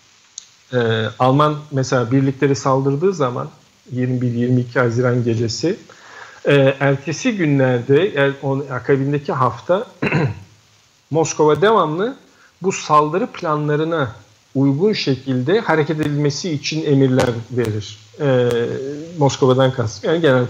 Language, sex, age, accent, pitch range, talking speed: Turkish, male, 50-69, native, 125-155 Hz, 95 wpm